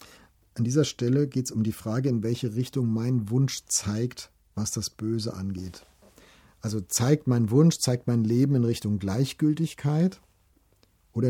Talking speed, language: 155 wpm, German